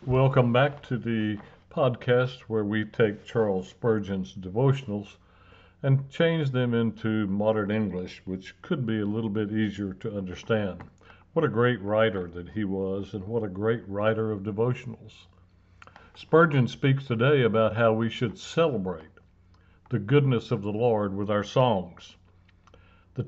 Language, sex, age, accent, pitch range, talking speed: English, male, 60-79, American, 95-125 Hz, 145 wpm